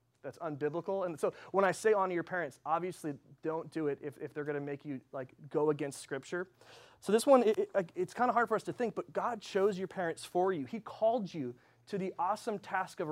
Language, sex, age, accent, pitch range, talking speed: English, male, 30-49, American, 155-220 Hz, 245 wpm